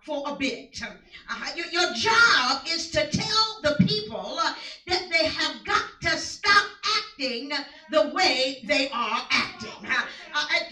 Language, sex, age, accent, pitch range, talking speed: English, female, 50-69, American, 250-335 Hz, 150 wpm